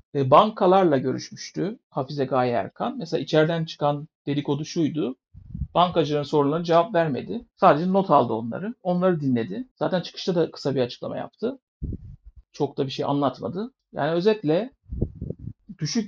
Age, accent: 60-79, native